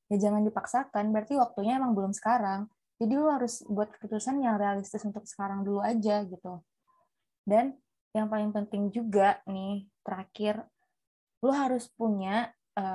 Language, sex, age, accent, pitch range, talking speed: Indonesian, female, 20-39, native, 195-230 Hz, 145 wpm